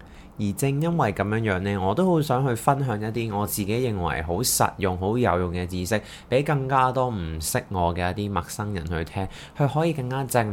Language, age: Chinese, 20-39